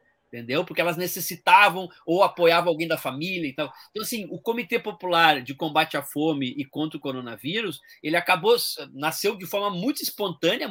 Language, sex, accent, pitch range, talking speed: Portuguese, male, Brazilian, 145-210 Hz, 175 wpm